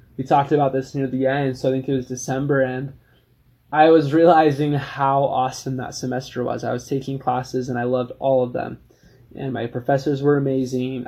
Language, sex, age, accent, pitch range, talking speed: English, male, 20-39, American, 130-150 Hz, 200 wpm